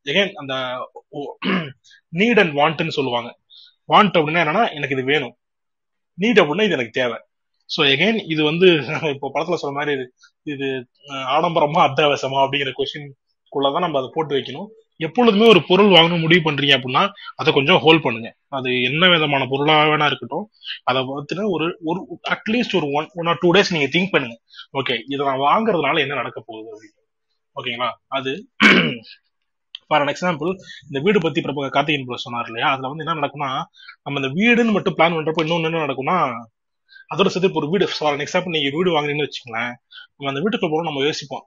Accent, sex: native, male